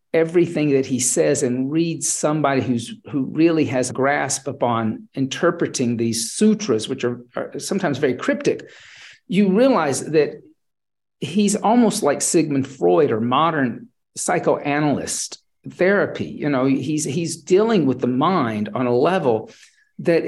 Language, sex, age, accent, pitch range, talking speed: English, male, 50-69, American, 135-205 Hz, 140 wpm